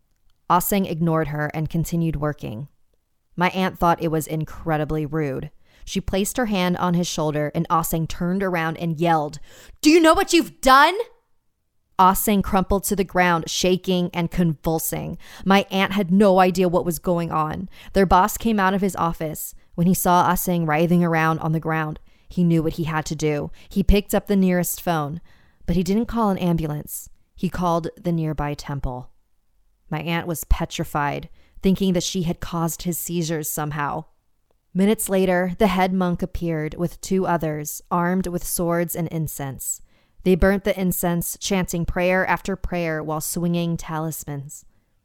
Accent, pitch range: American, 160-185 Hz